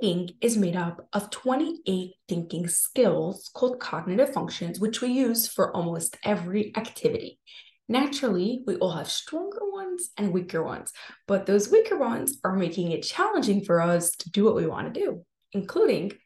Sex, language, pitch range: female, English, 185-265 Hz